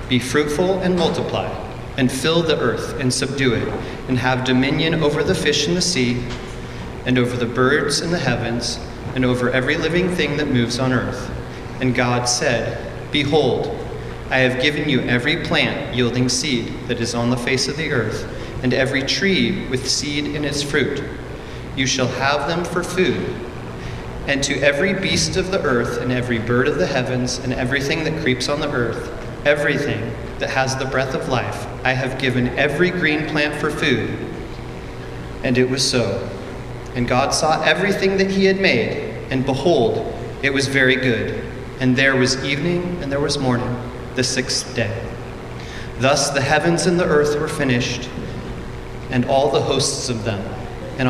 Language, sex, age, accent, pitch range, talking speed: English, male, 30-49, American, 120-145 Hz, 175 wpm